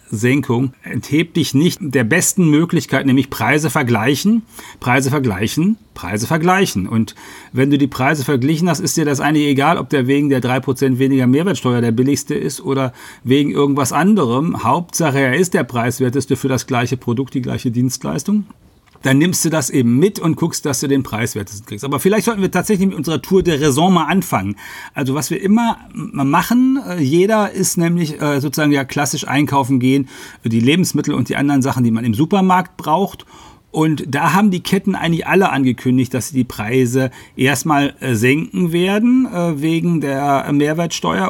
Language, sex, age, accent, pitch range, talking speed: German, male, 40-59, German, 130-165 Hz, 175 wpm